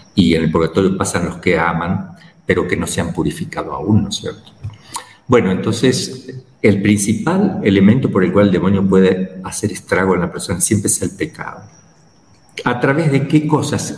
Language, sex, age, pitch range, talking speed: Spanish, male, 50-69, 90-125 Hz, 185 wpm